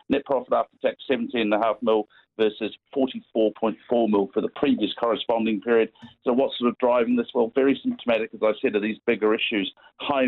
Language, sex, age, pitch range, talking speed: English, male, 50-69, 105-120 Hz, 180 wpm